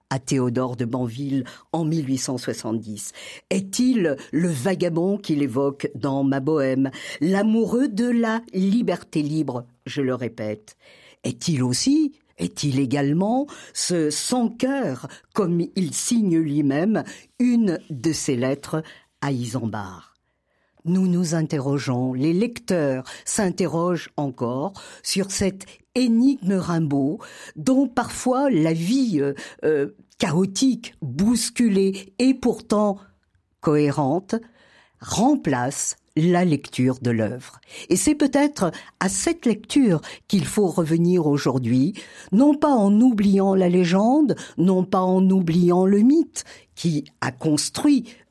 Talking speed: 110 wpm